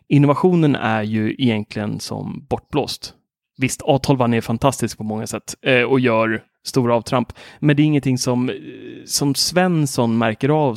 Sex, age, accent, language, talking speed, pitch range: male, 30-49, native, Swedish, 150 wpm, 115-135 Hz